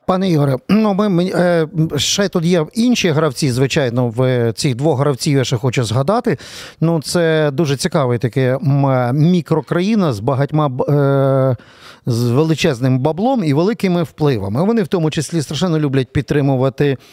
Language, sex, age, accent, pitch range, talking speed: Ukrainian, male, 40-59, native, 135-180 Hz, 140 wpm